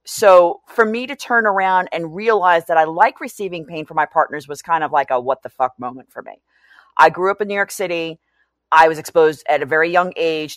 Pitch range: 150-210 Hz